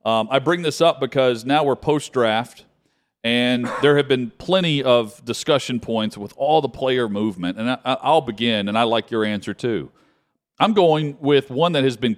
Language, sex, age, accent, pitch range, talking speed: English, male, 40-59, American, 110-140 Hz, 185 wpm